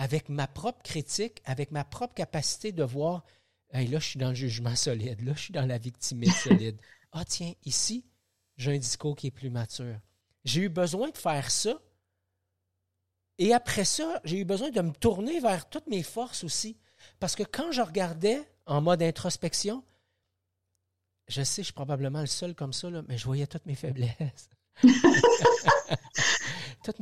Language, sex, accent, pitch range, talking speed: French, male, Canadian, 120-175 Hz, 180 wpm